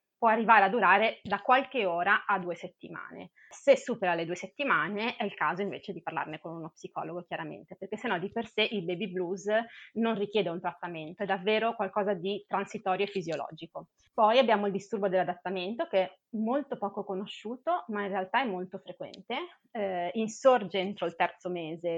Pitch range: 185-230 Hz